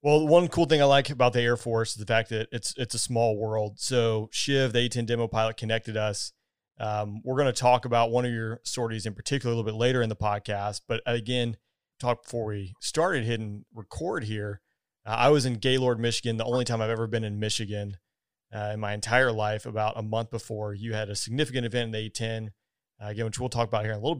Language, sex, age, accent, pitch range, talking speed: English, male, 30-49, American, 110-120 Hz, 240 wpm